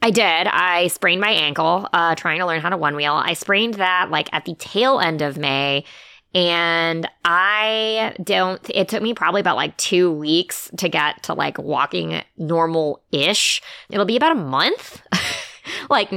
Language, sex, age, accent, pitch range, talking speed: English, female, 20-39, American, 150-190 Hz, 175 wpm